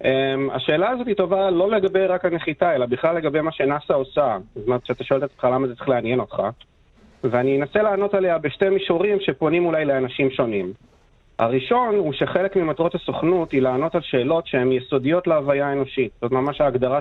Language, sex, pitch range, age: Hebrew, male, 130-180 Hz, 30-49